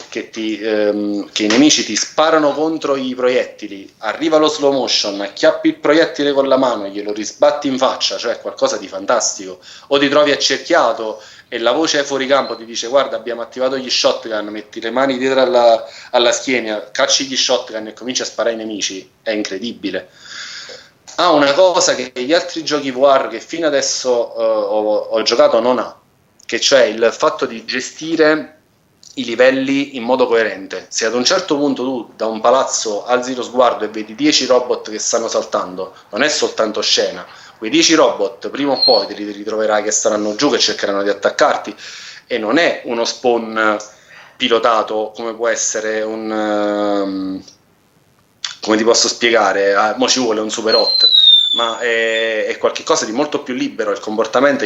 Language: Italian